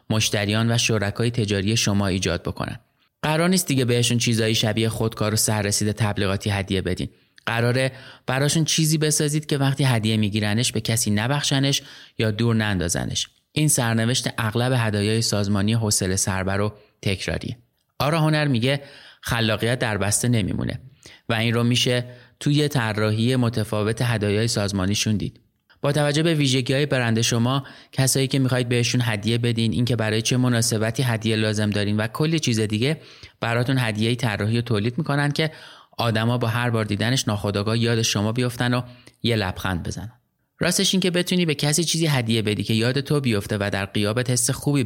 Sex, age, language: male, 30-49, Persian